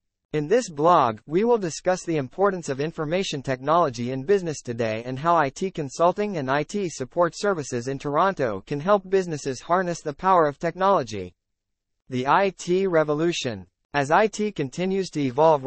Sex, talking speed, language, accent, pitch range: male, 155 wpm, English, American, 130-185 Hz